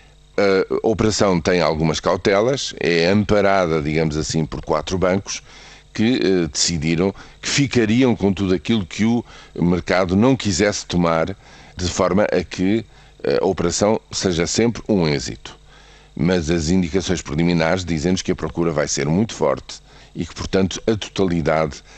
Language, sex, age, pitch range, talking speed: Portuguese, male, 50-69, 85-100 Hz, 145 wpm